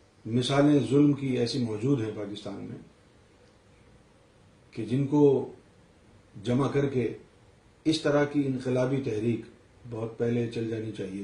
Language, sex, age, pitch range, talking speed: Urdu, male, 40-59, 105-125 Hz, 130 wpm